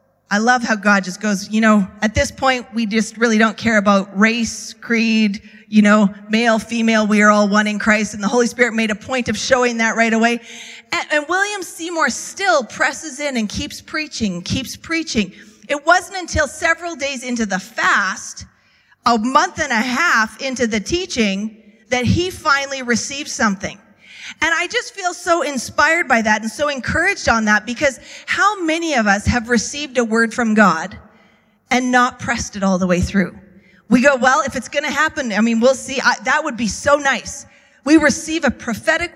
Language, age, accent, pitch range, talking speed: English, 30-49, American, 220-290 Hz, 195 wpm